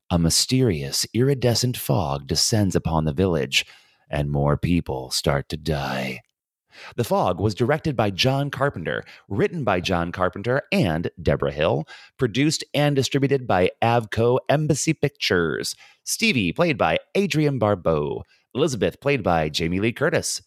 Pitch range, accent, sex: 85-140 Hz, American, male